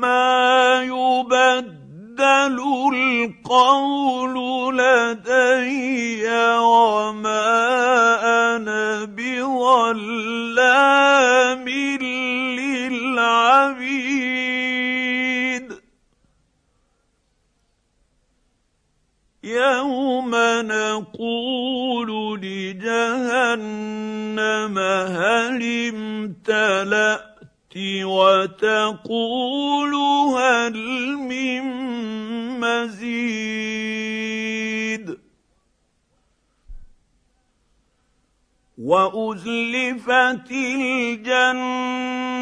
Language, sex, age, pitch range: Arabic, male, 50-69, 225-255 Hz